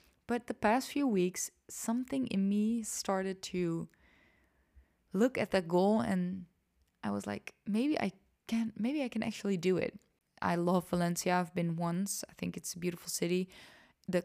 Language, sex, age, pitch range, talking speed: English, female, 20-39, 180-215 Hz, 170 wpm